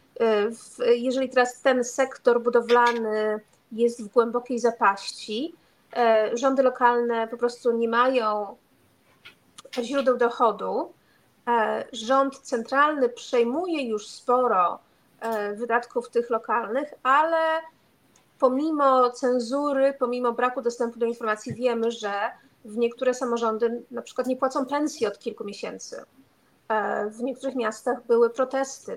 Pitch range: 230-265 Hz